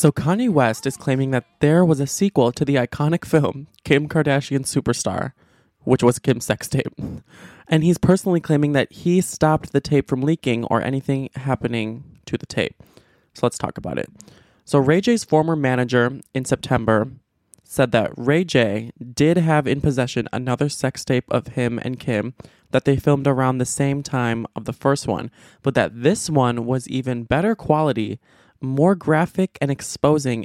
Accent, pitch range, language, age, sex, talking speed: American, 120-150 Hz, English, 20-39, male, 175 wpm